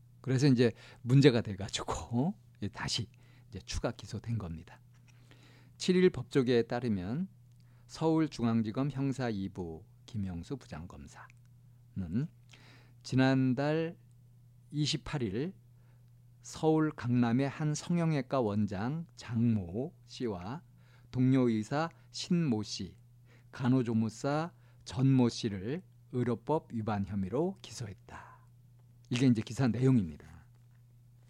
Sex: male